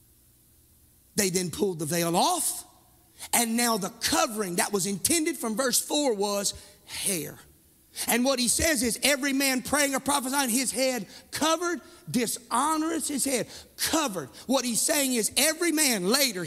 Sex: male